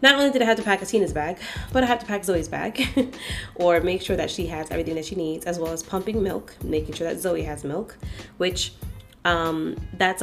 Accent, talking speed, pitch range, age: American, 235 wpm, 165-220 Hz, 20-39